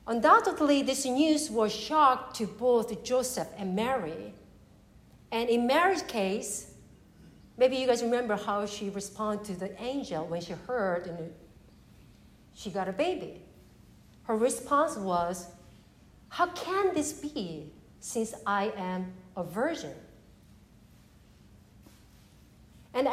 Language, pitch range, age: English, 180-275 Hz, 50-69